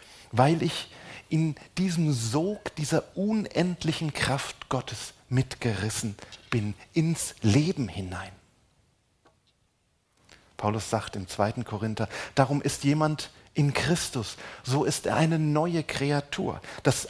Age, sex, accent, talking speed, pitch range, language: 40-59, male, German, 110 wpm, 115-155 Hz, German